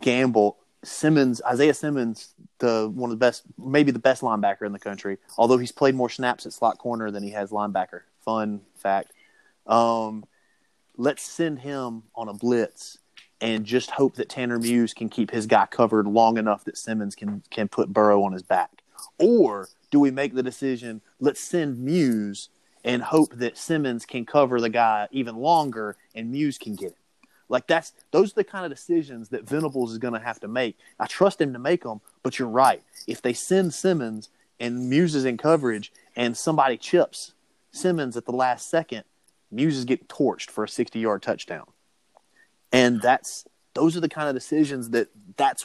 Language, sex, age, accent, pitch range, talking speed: English, male, 30-49, American, 115-150 Hz, 190 wpm